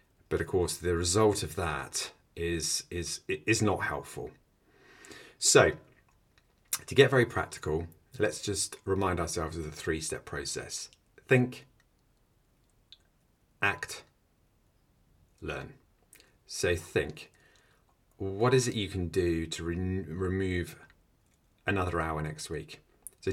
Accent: British